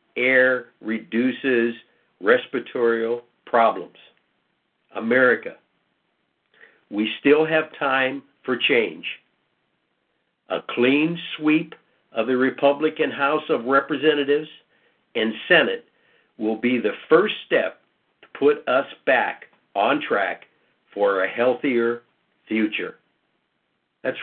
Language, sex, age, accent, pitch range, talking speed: English, male, 60-79, American, 115-155 Hz, 95 wpm